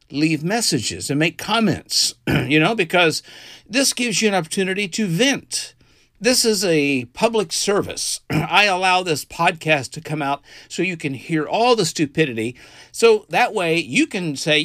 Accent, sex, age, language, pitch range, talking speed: American, male, 50-69, English, 130-200 Hz, 165 wpm